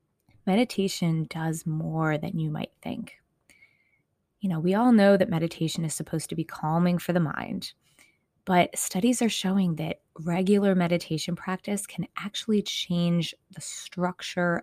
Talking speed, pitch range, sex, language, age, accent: 145 wpm, 165-190 Hz, female, English, 20-39, American